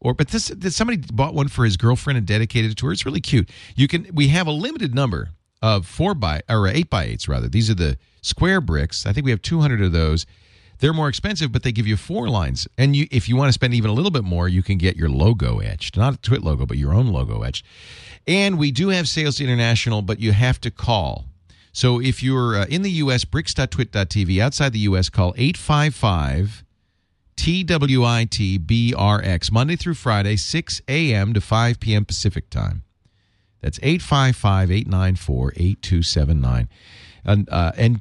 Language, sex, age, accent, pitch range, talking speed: English, male, 40-59, American, 95-130 Hz, 195 wpm